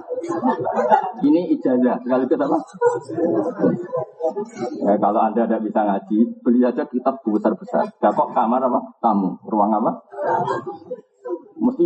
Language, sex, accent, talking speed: Indonesian, male, native, 105 wpm